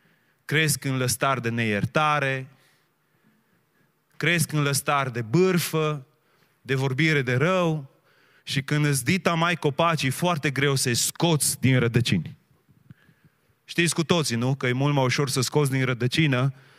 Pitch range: 130-155 Hz